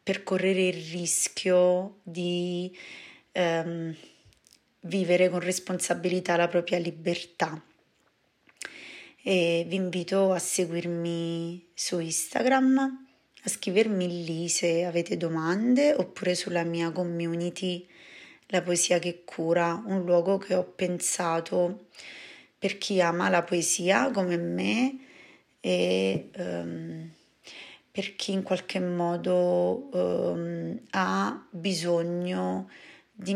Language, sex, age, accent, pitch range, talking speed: Italian, female, 30-49, native, 170-185 Hz, 100 wpm